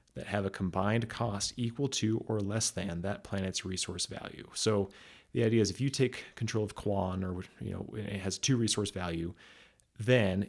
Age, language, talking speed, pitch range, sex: 30-49, English, 190 wpm, 95-110 Hz, male